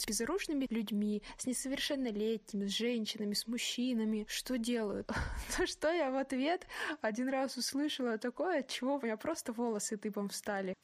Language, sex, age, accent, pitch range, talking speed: Russian, female, 20-39, native, 210-255 Hz, 150 wpm